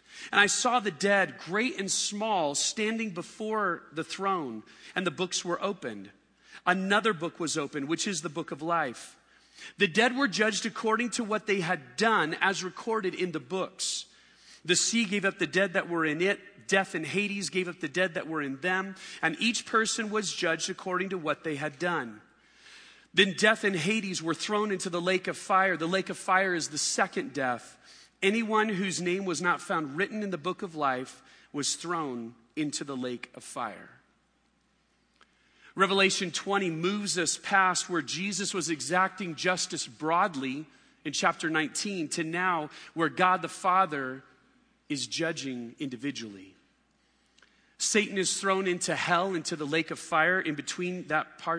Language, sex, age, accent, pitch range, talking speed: English, male, 40-59, American, 160-200 Hz, 170 wpm